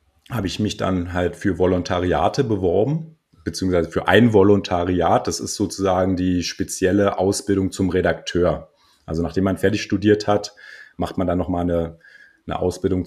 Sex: male